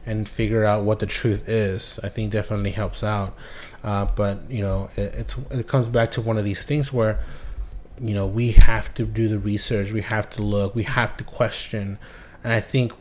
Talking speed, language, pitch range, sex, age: 210 wpm, English, 100-120 Hz, male, 20-39